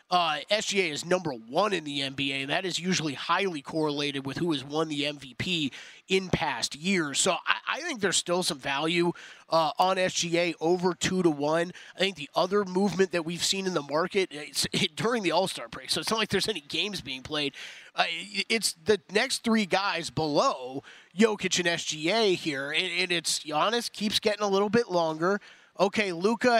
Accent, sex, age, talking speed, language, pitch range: American, male, 30-49, 200 wpm, English, 155-195 Hz